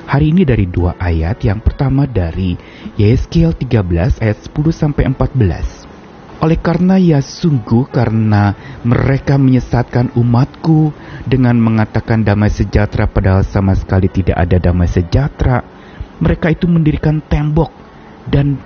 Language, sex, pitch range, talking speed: Indonesian, male, 100-130 Hz, 120 wpm